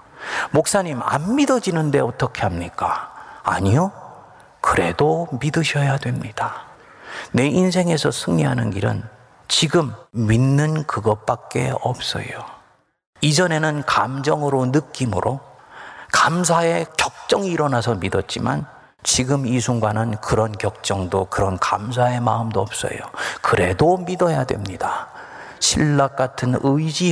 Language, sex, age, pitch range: Korean, male, 40-59, 120-160 Hz